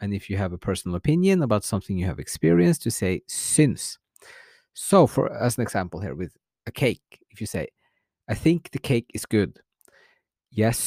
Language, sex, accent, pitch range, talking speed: English, male, Norwegian, 100-150 Hz, 190 wpm